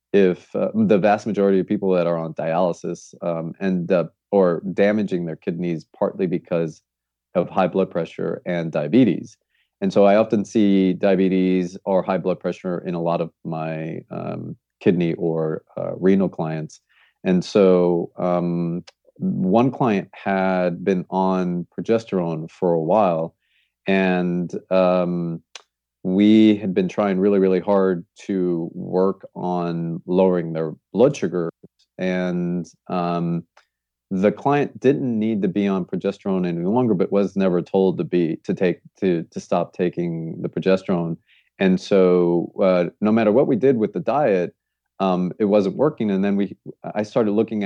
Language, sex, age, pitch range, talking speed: English, male, 30-49, 85-100 Hz, 155 wpm